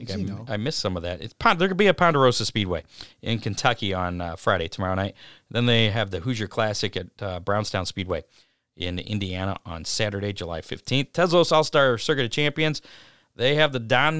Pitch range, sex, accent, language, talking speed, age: 105-140 Hz, male, American, English, 195 wpm, 40-59